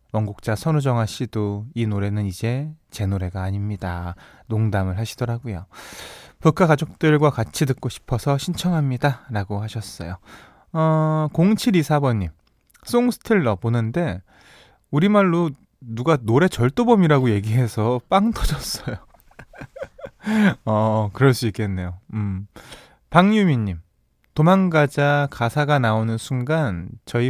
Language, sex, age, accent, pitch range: Korean, male, 20-39, native, 105-150 Hz